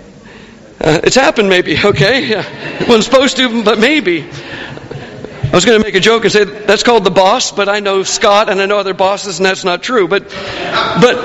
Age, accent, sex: 50-69, American, male